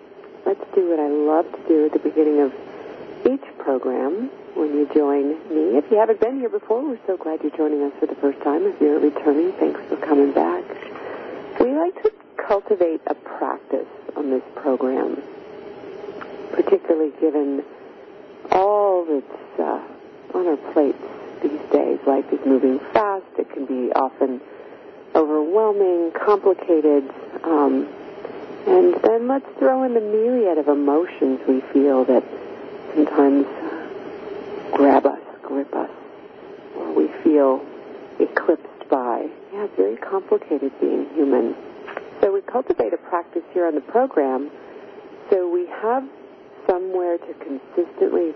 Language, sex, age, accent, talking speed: English, female, 50-69, American, 140 wpm